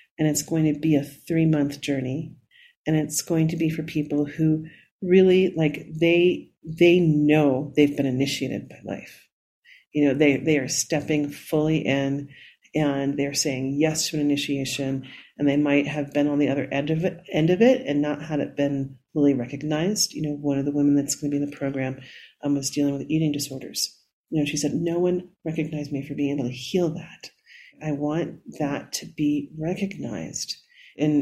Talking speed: 195 wpm